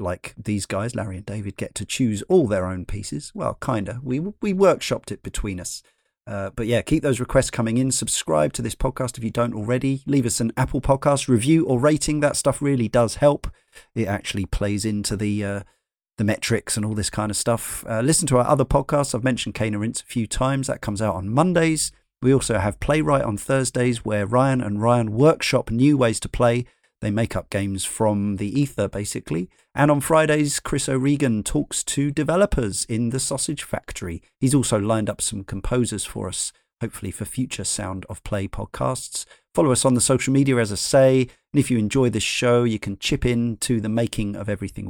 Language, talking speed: English, 210 wpm